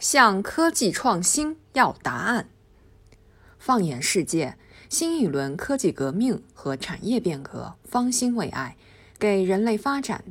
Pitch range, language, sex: 145-240 Hz, Chinese, female